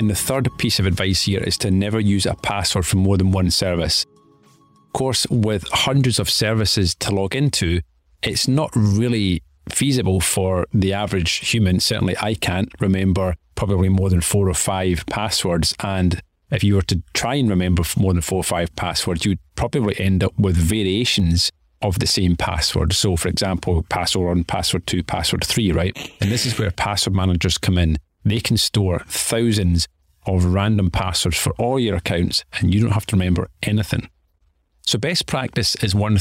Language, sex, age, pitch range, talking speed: English, male, 40-59, 90-105 Hz, 185 wpm